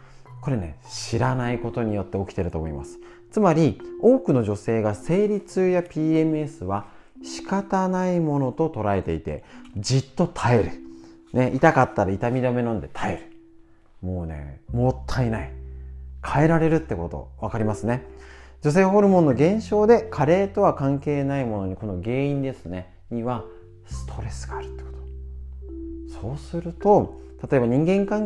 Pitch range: 95-150 Hz